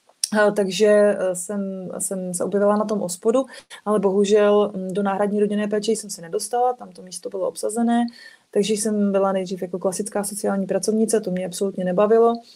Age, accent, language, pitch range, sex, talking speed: 30-49, native, Czech, 190-220 Hz, female, 160 wpm